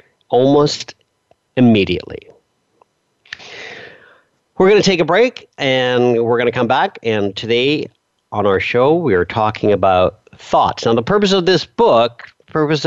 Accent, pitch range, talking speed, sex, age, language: American, 110-160 Hz, 145 wpm, male, 50-69, English